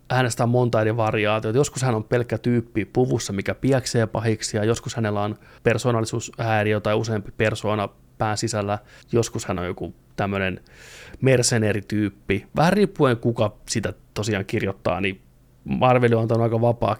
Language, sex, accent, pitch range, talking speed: Finnish, male, native, 105-125 Hz, 140 wpm